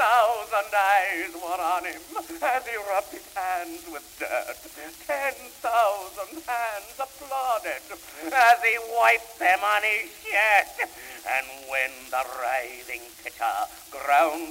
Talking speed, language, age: 120 wpm, English, 60-79